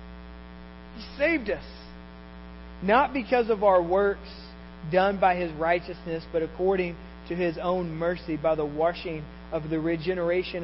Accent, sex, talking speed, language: American, male, 130 wpm, English